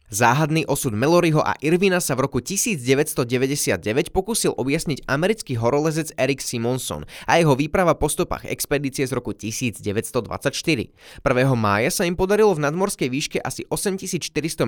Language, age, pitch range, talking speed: Slovak, 20-39, 125-175 Hz, 140 wpm